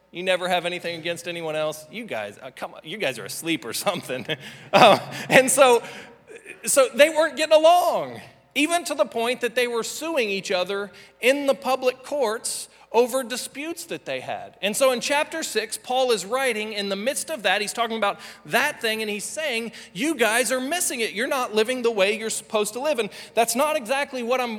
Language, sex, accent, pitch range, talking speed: English, male, American, 195-260 Hz, 210 wpm